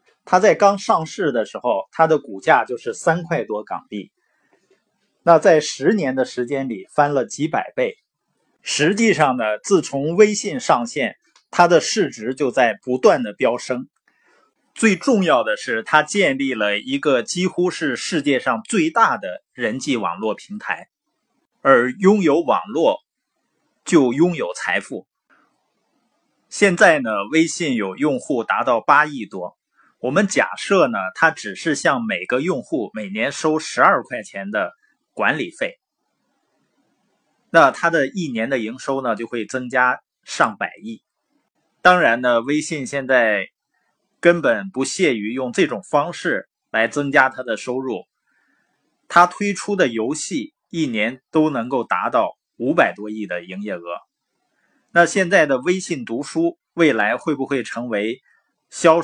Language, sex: Chinese, male